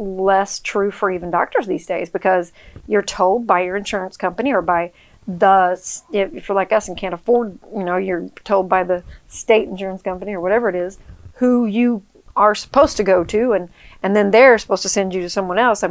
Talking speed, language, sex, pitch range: 210 wpm, English, female, 195-250 Hz